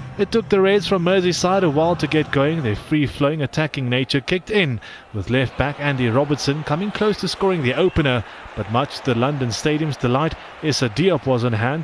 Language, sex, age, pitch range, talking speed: English, male, 30-49, 130-180 Hz, 195 wpm